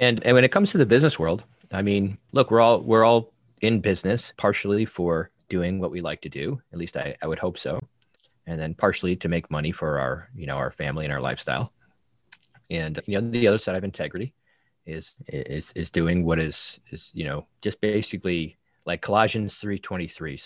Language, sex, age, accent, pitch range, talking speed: English, male, 30-49, American, 80-110 Hz, 205 wpm